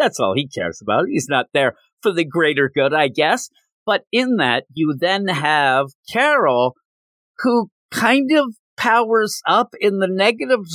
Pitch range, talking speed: 140-220 Hz, 160 wpm